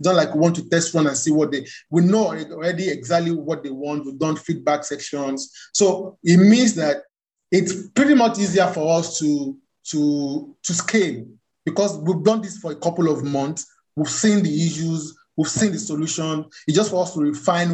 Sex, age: male, 30-49